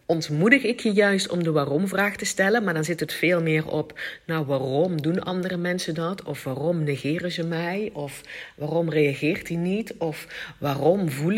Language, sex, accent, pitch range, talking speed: Dutch, female, Dutch, 145-180 Hz, 185 wpm